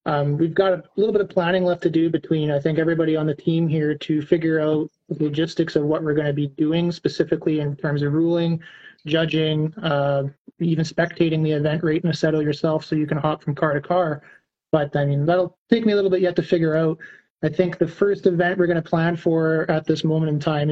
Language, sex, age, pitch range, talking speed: English, male, 30-49, 155-175 Hz, 240 wpm